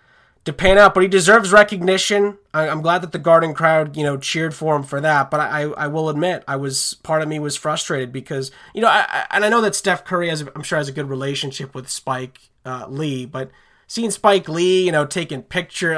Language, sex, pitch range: English, male, 140-185 Hz